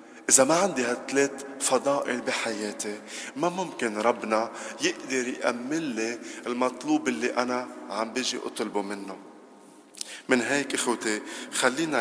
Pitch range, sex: 110-140 Hz, male